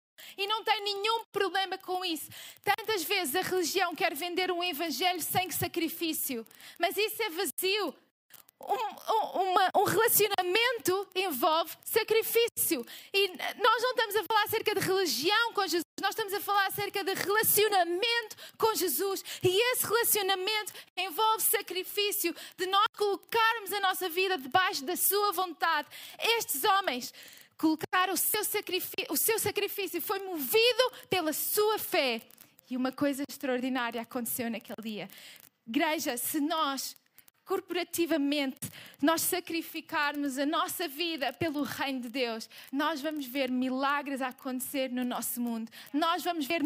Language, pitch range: Portuguese, 285-400 Hz